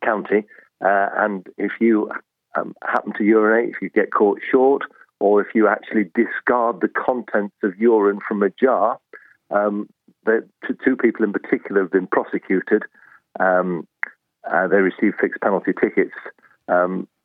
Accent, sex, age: British, male, 50-69